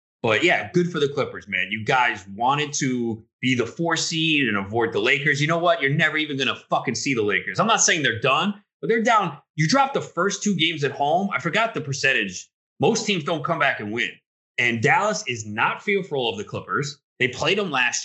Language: English